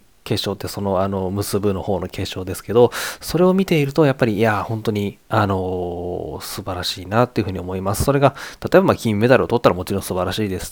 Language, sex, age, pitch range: Japanese, male, 20-39, 95-125 Hz